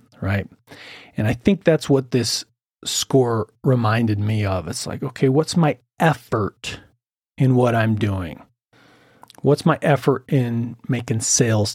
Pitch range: 110-135 Hz